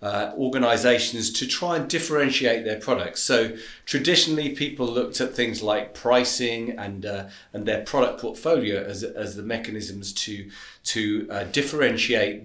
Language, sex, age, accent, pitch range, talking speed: English, male, 40-59, British, 105-130 Hz, 145 wpm